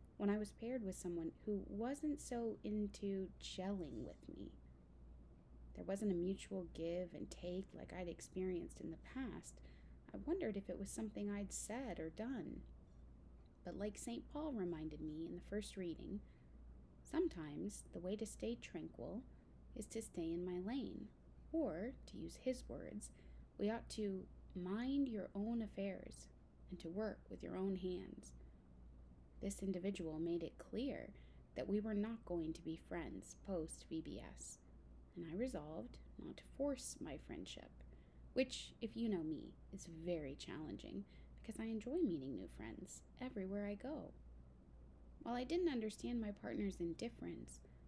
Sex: female